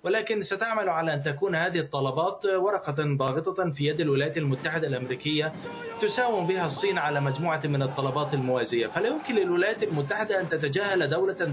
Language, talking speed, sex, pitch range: Arabic, 150 wpm, male, 145-185 Hz